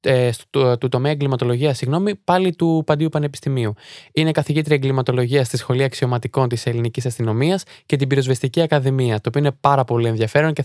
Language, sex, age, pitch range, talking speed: Greek, male, 20-39, 125-150 Hz, 150 wpm